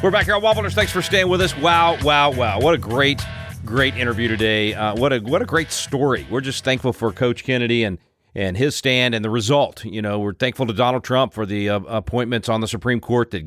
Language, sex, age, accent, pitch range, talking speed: English, male, 40-59, American, 105-130 Hz, 245 wpm